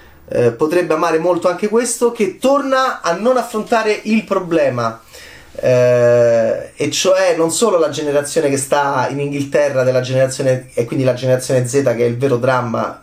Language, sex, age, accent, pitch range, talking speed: Italian, male, 30-49, native, 115-185 Hz, 165 wpm